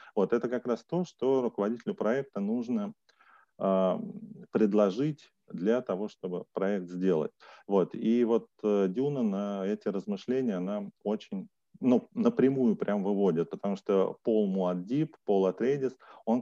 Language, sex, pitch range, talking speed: Russian, male, 100-140 Hz, 130 wpm